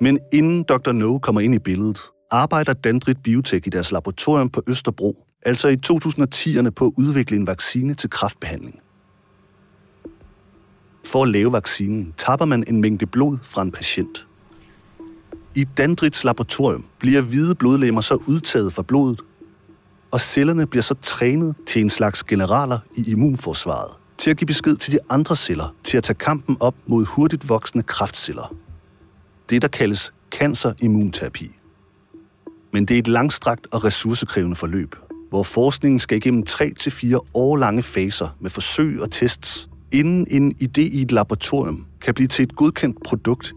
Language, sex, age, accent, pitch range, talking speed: Danish, male, 40-59, native, 95-140 Hz, 155 wpm